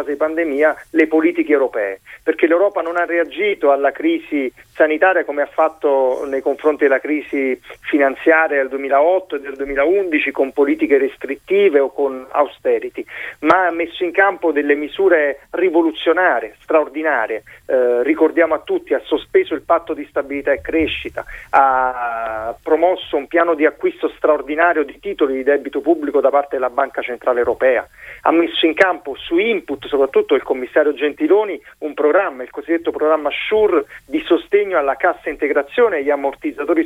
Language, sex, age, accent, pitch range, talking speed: Italian, male, 40-59, native, 145-230 Hz, 155 wpm